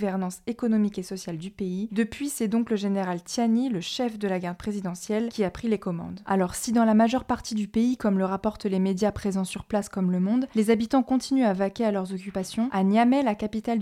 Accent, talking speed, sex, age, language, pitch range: French, 235 wpm, female, 20-39, French, 195-230 Hz